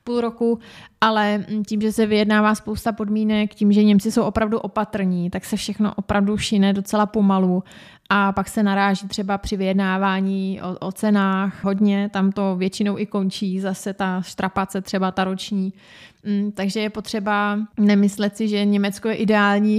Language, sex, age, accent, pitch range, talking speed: Czech, female, 20-39, native, 195-215 Hz, 160 wpm